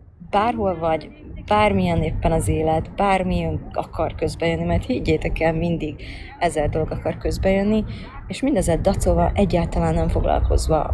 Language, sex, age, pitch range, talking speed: Hungarian, female, 20-39, 155-195 Hz, 125 wpm